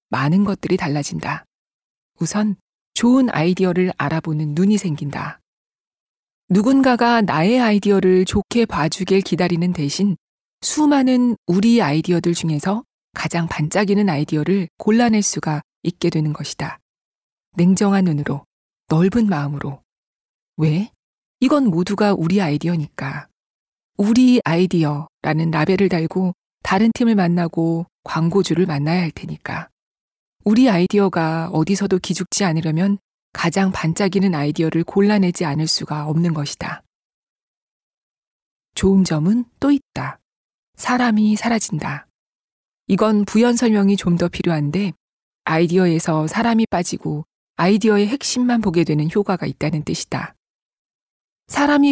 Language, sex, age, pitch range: Korean, female, 40-59, 160-210 Hz